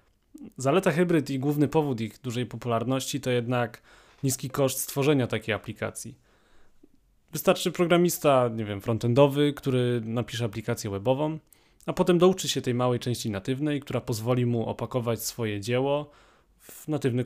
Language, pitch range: Polish, 110-145 Hz